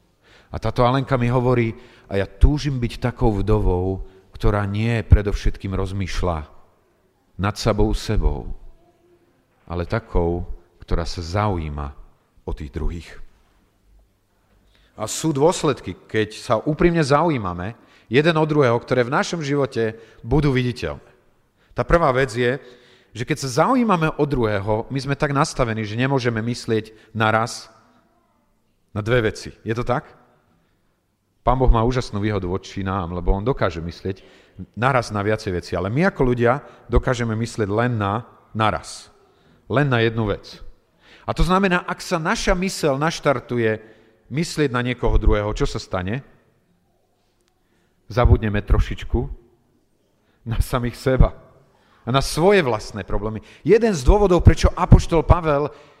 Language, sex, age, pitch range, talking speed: Slovak, male, 40-59, 100-130 Hz, 135 wpm